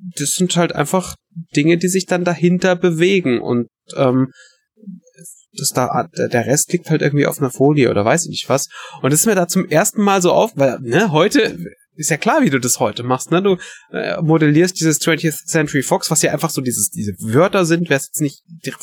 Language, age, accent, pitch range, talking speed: German, 30-49, German, 145-180 Hz, 220 wpm